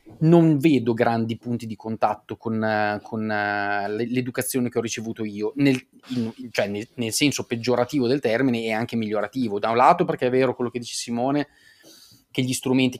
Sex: male